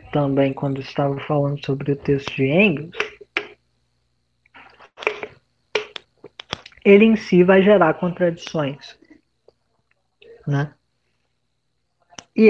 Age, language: 20-39, Portuguese